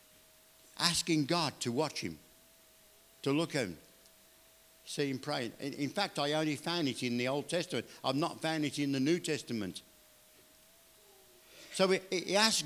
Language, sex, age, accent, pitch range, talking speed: English, male, 60-79, British, 150-185 Hz, 160 wpm